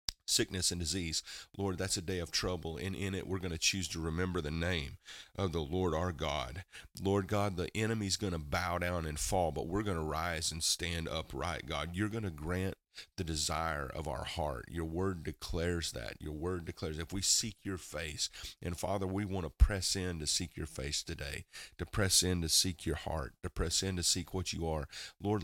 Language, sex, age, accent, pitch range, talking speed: English, male, 40-59, American, 80-95 Hz, 220 wpm